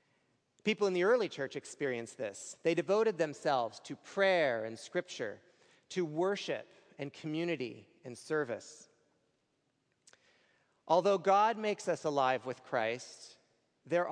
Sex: male